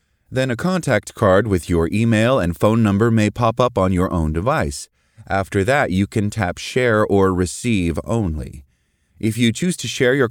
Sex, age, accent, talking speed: male, 30-49, American, 185 wpm